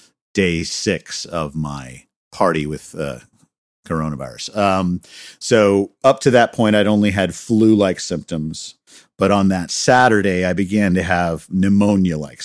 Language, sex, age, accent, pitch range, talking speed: English, male, 50-69, American, 85-105 Hz, 135 wpm